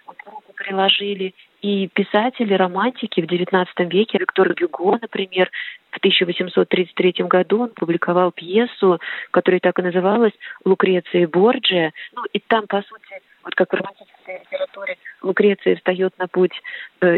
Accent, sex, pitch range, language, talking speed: native, female, 180-215 Hz, Russian, 135 wpm